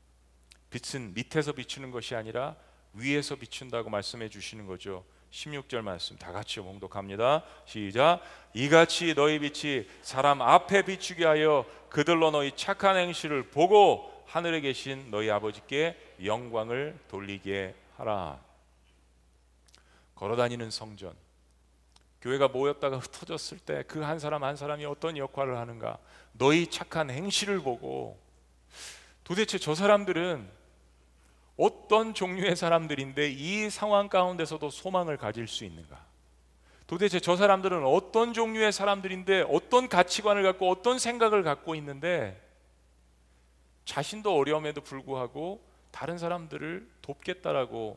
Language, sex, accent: Korean, male, native